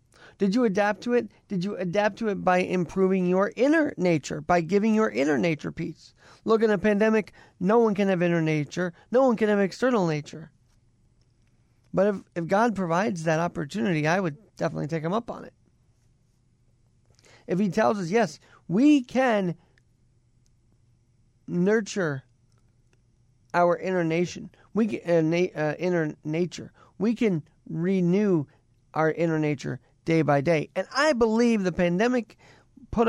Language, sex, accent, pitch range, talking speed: English, male, American, 125-200 Hz, 145 wpm